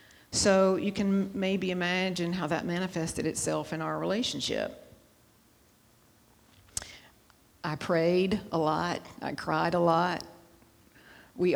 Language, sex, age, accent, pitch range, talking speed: English, female, 50-69, American, 160-195 Hz, 110 wpm